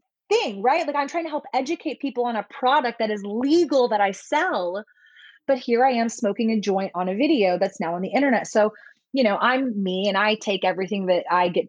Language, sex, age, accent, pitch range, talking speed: English, female, 20-39, American, 180-240 Hz, 230 wpm